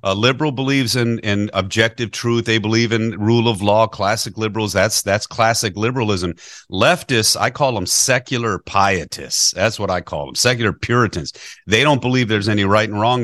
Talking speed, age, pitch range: 180 wpm, 40-59, 105-135 Hz